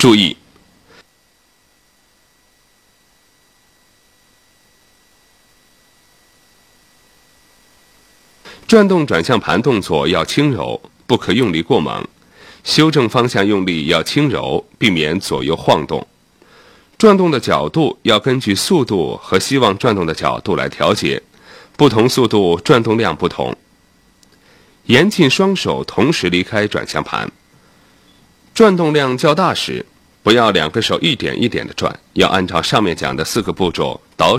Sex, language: male, Chinese